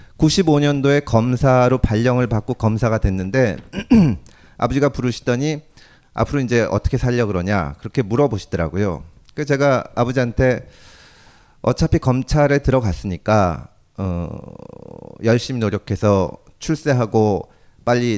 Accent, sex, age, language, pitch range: native, male, 40-59, Korean, 105-150 Hz